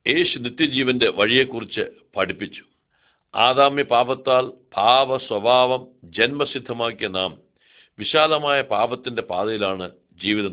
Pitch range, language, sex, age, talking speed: 110-140 Hz, Arabic, male, 60-79, 125 wpm